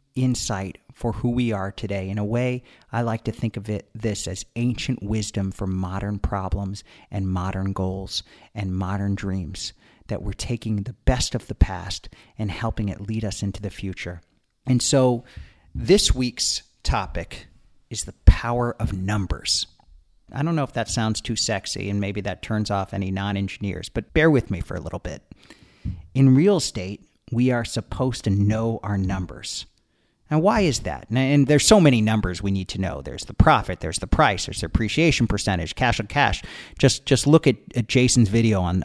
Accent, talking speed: American, 185 wpm